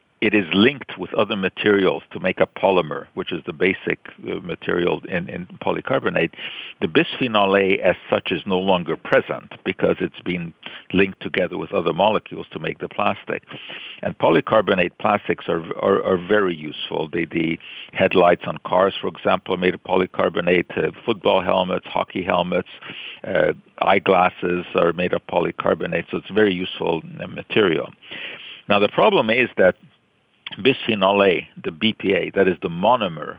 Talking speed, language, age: 155 wpm, English, 50-69